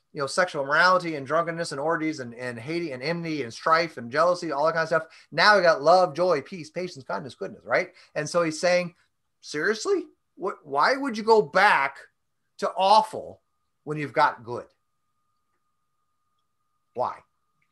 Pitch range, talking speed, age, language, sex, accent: 125-175 Hz, 170 wpm, 30-49, English, male, American